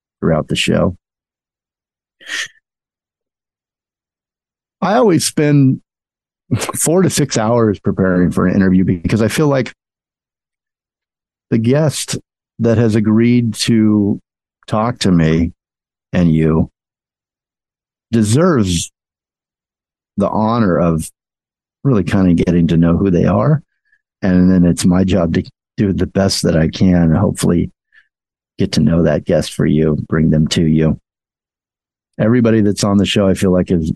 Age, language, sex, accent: 50-69, English, male, American